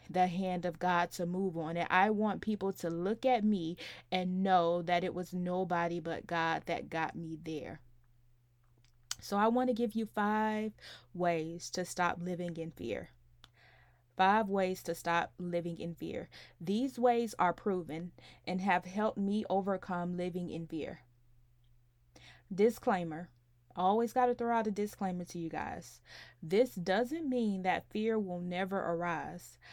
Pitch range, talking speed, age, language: 165-230 Hz, 155 wpm, 20-39, English